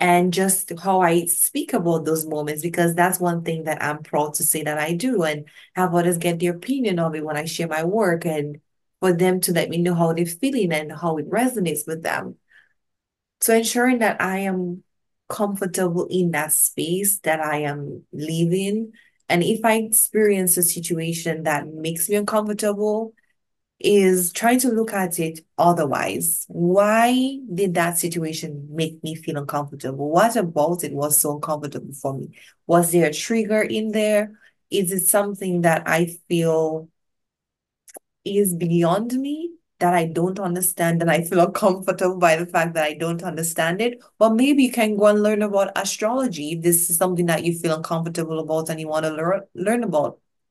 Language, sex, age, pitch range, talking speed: English, female, 20-39, 160-205 Hz, 180 wpm